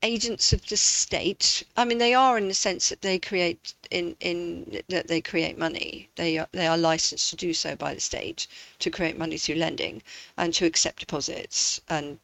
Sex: female